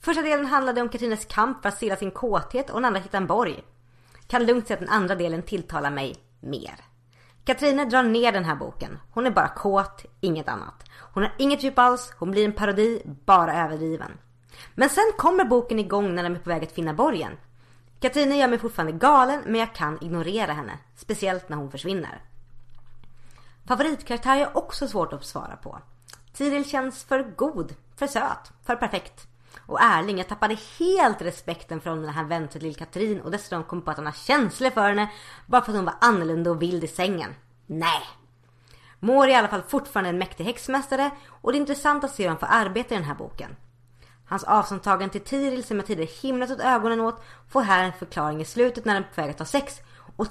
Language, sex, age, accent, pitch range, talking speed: Swedish, female, 30-49, native, 155-245 Hz, 205 wpm